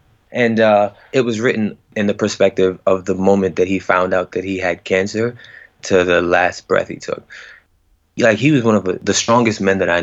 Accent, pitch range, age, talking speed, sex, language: American, 95-110 Hz, 20-39, 210 wpm, male, English